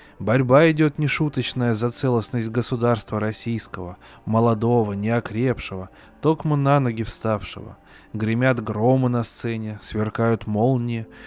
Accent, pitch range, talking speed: native, 110-135 Hz, 100 wpm